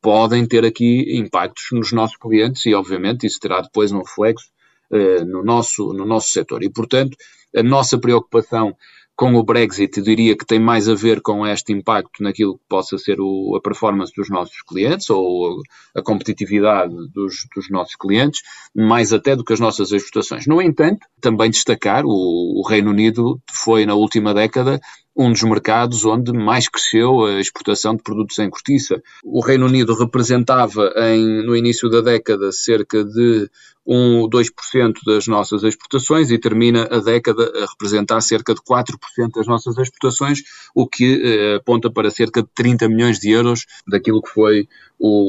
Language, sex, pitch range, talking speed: Portuguese, male, 105-120 Hz, 170 wpm